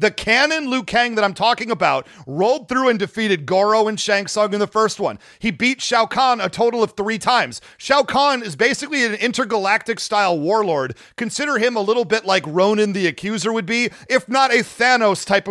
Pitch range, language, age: 195-240 Hz, English, 40-59